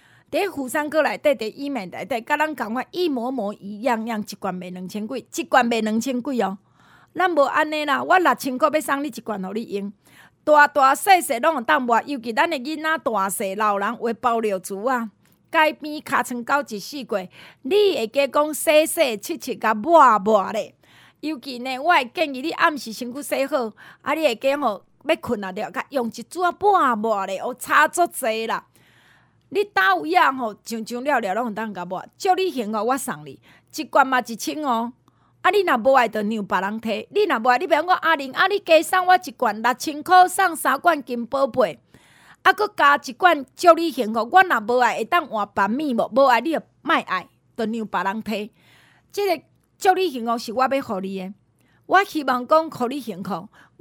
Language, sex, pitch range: Chinese, female, 225-315 Hz